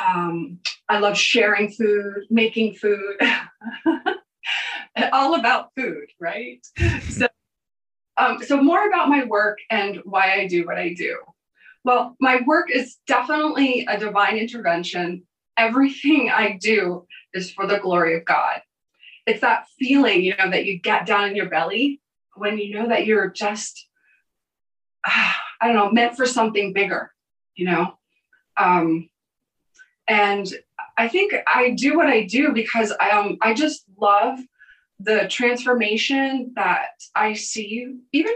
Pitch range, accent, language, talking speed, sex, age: 195-250 Hz, American, English, 140 wpm, female, 20-39